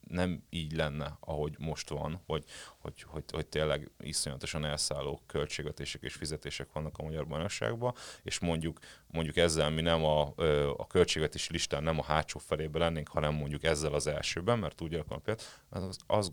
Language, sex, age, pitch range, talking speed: Hungarian, male, 30-49, 75-95 Hz, 160 wpm